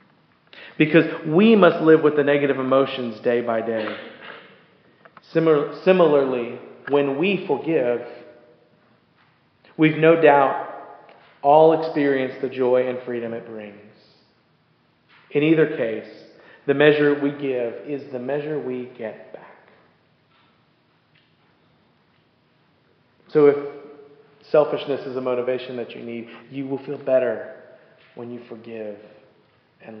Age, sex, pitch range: 40-59, male, 125-155 Hz